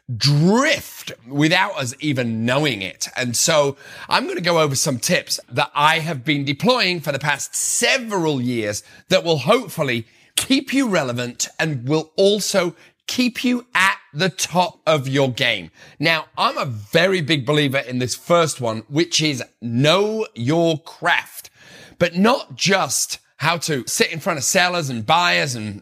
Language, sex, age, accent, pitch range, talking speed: English, male, 30-49, British, 125-180 Hz, 165 wpm